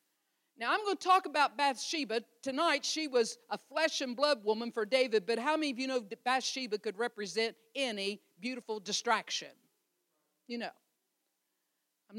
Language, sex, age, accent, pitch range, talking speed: English, female, 50-69, American, 265-360 Hz, 160 wpm